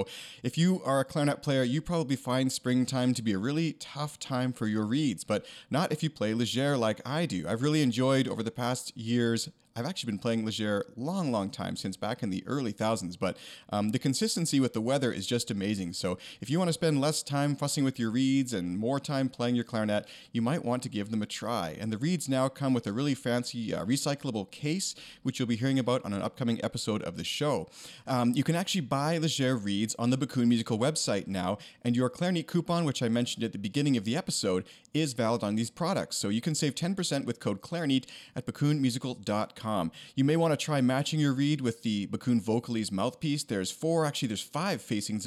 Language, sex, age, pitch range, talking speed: English, male, 30-49, 110-145 Hz, 225 wpm